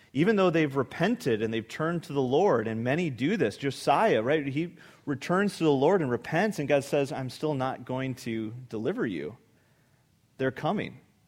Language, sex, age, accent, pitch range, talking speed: English, male, 30-49, American, 115-145 Hz, 185 wpm